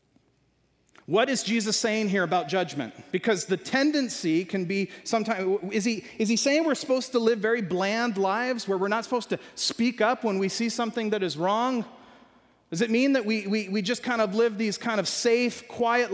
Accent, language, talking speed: American, English, 200 wpm